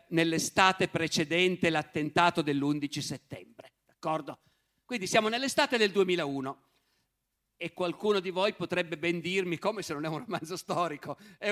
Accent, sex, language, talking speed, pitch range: native, male, Italian, 135 wpm, 155-195 Hz